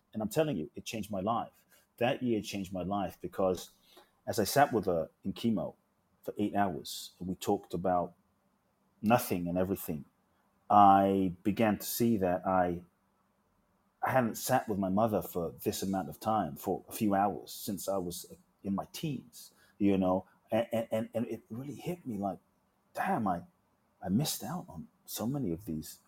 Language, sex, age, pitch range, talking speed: English, male, 30-49, 95-125 Hz, 180 wpm